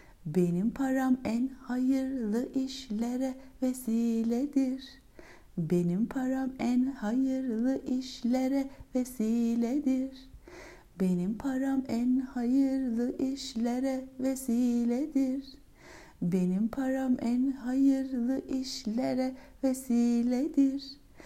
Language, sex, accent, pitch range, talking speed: Turkish, female, native, 240-270 Hz, 70 wpm